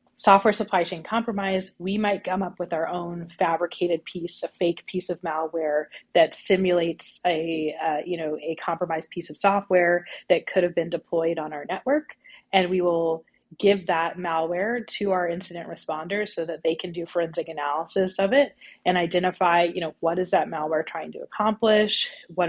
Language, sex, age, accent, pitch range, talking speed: English, female, 30-49, American, 165-190 Hz, 180 wpm